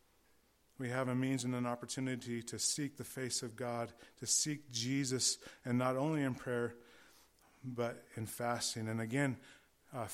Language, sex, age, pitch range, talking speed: English, male, 30-49, 120-145 Hz, 160 wpm